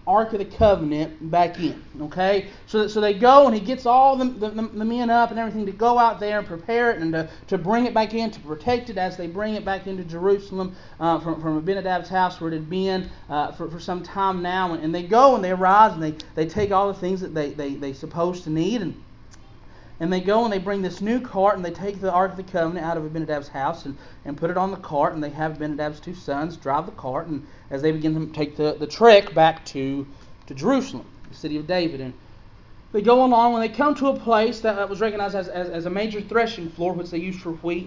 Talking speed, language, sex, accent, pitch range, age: 255 wpm, English, male, American, 160-210 Hz, 40-59